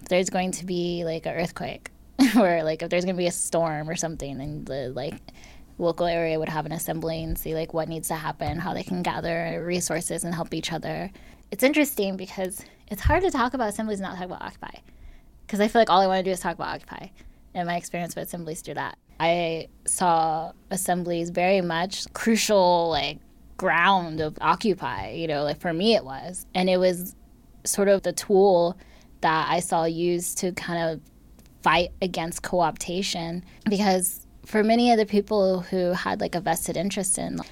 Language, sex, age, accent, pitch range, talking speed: English, female, 10-29, American, 160-185 Hz, 200 wpm